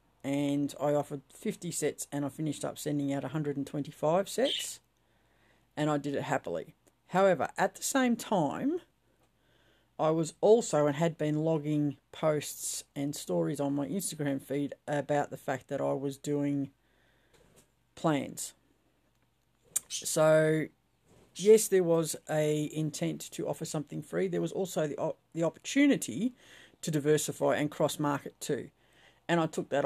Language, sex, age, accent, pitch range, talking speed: English, female, 50-69, Australian, 140-160 Hz, 145 wpm